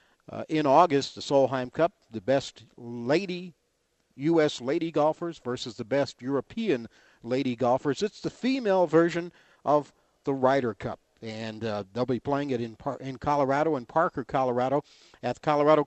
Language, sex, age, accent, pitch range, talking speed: English, male, 50-69, American, 130-165 Hz, 160 wpm